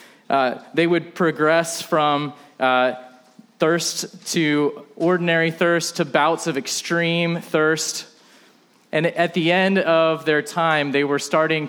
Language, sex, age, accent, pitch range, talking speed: English, male, 20-39, American, 130-165 Hz, 130 wpm